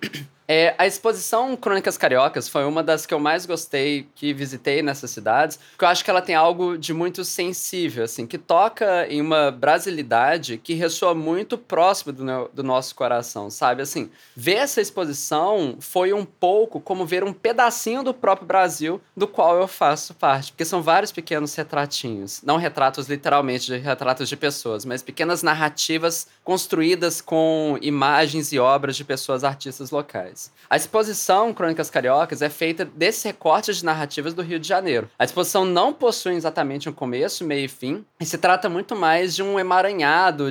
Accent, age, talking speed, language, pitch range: Brazilian, 20-39, 175 wpm, English, 145-185 Hz